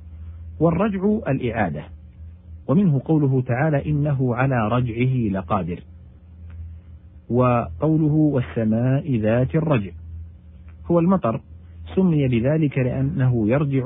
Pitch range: 85-140 Hz